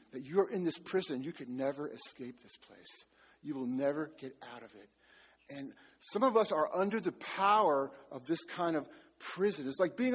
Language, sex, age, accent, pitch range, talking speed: English, male, 50-69, American, 135-205 Hz, 200 wpm